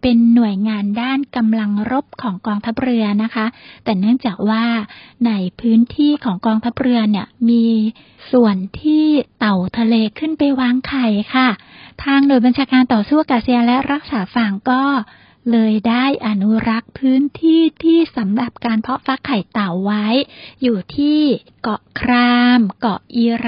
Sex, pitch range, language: female, 225-275 Hz, Thai